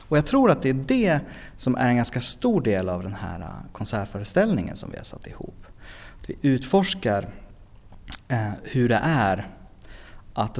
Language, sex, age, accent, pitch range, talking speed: Swedish, male, 30-49, native, 100-135 Hz, 170 wpm